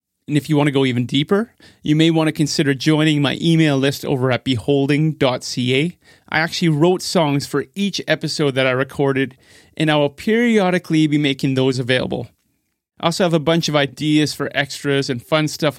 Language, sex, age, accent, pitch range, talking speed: English, male, 30-49, American, 135-160 Hz, 190 wpm